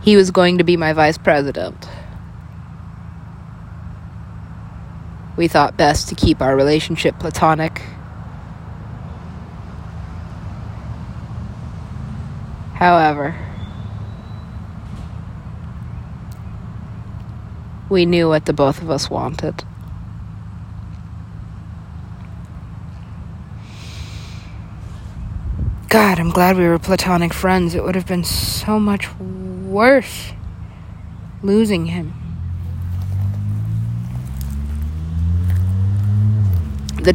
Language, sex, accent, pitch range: English, female, American, 85-120 Hz